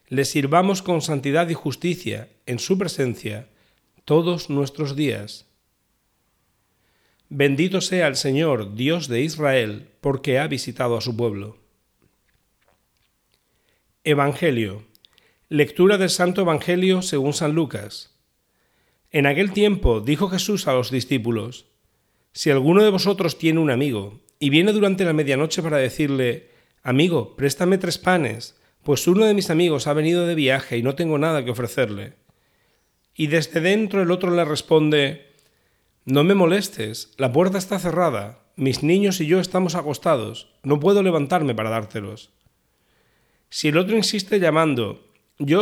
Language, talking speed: Spanish, 140 wpm